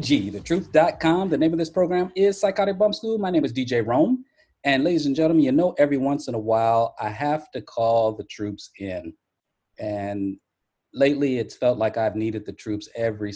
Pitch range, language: 100-120 Hz, English